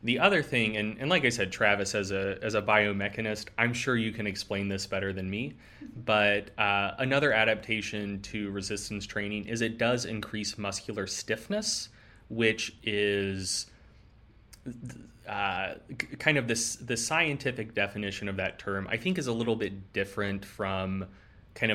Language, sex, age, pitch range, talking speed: English, male, 20-39, 100-115 Hz, 155 wpm